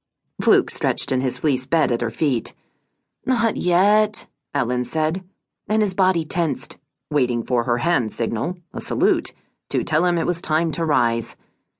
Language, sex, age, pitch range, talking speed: English, female, 40-59, 135-185 Hz, 165 wpm